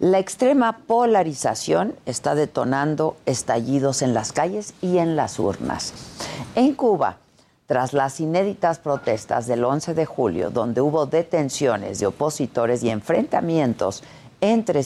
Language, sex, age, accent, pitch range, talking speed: Spanish, female, 50-69, Mexican, 135-190 Hz, 125 wpm